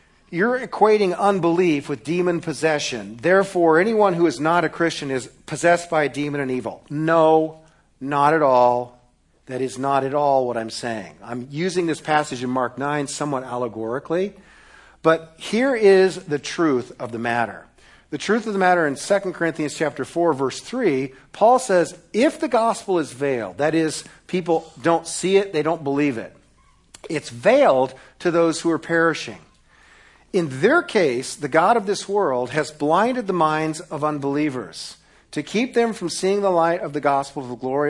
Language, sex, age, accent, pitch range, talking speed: English, male, 50-69, American, 135-175 Hz, 175 wpm